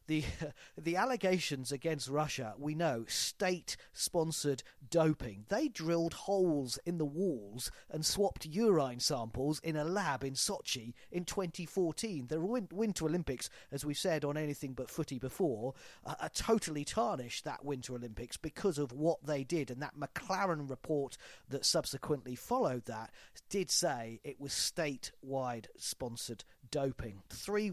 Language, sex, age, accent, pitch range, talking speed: English, male, 40-59, British, 130-170 Hz, 140 wpm